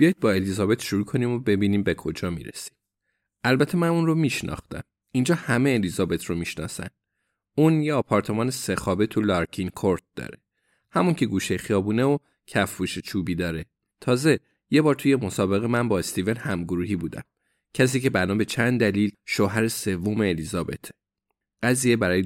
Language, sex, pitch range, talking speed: Persian, male, 95-135 Hz, 150 wpm